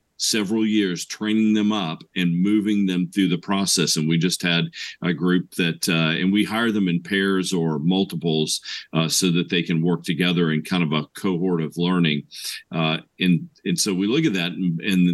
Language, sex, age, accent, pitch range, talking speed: English, male, 50-69, American, 85-100 Hz, 200 wpm